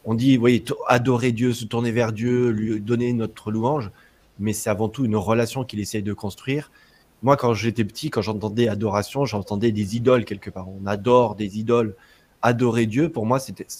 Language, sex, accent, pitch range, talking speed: French, male, French, 105-130 Hz, 195 wpm